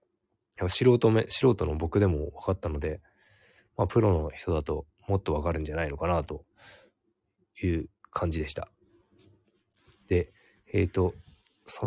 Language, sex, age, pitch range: Japanese, male, 20-39, 85-115 Hz